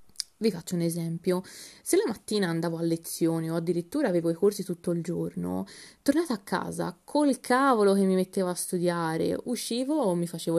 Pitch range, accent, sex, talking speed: 175-225 Hz, native, female, 180 wpm